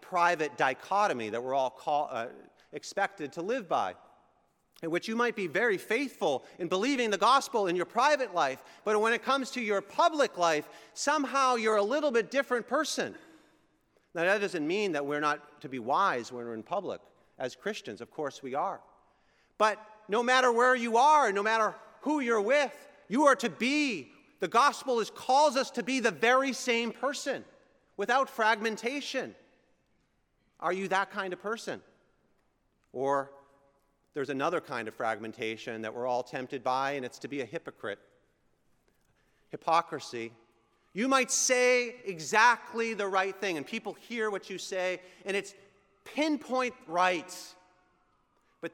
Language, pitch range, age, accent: English, 175-255 Hz, 40-59, American